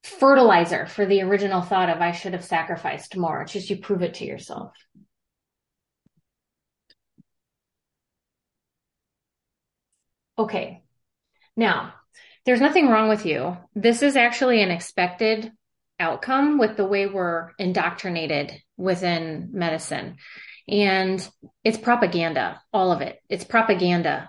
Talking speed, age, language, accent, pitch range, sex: 115 wpm, 30-49, English, American, 180-230 Hz, female